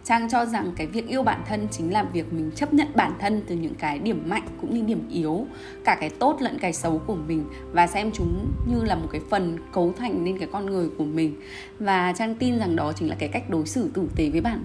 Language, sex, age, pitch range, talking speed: Vietnamese, female, 20-39, 165-225 Hz, 260 wpm